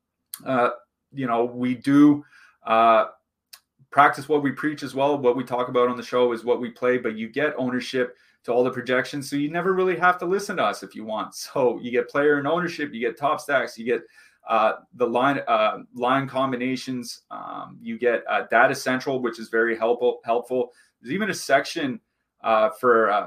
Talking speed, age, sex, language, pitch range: 200 wpm, 30-49, male, English, 120-140 Hz